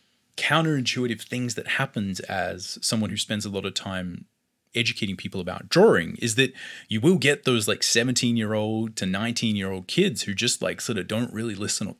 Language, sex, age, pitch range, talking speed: English, male, 20-39, 105-125 Hz, 200 wpm